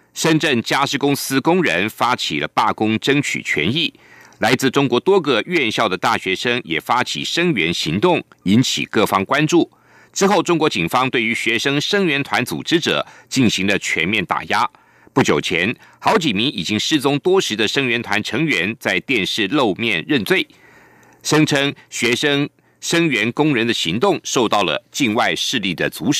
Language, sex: German, male